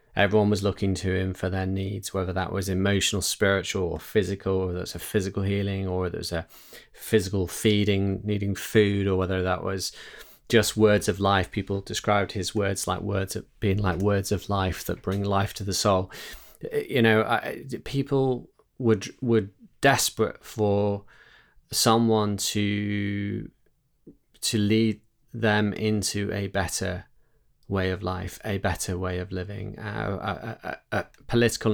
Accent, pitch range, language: British, 100-110 Hz, English